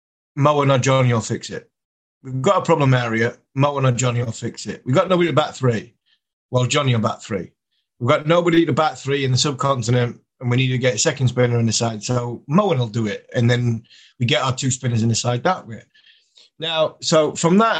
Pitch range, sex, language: 120-145 Hz, male, English